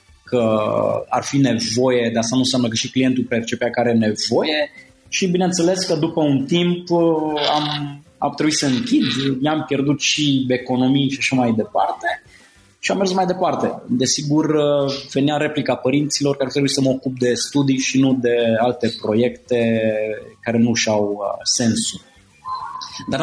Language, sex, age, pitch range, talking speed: Romanian, male, 20-39, 115-145 Hz, 160 wpm